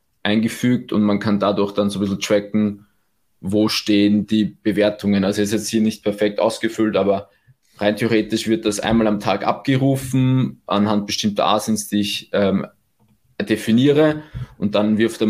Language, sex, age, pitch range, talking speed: German, male, 20-39, 105-120 Hz, 165 wpm